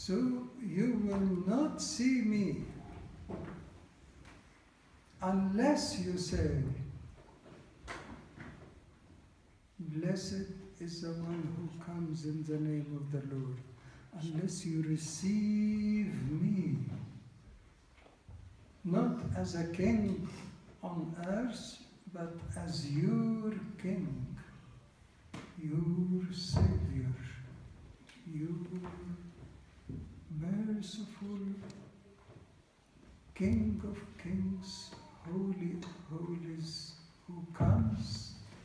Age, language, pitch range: 60-79, English, 135-195 Hz